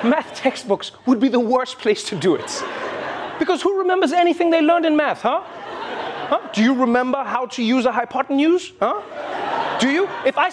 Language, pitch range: English, 200-310 Hz